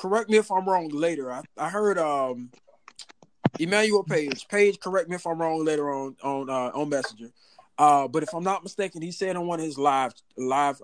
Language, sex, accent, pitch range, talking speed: English, male, American, 155-205 Hz, 210 wpm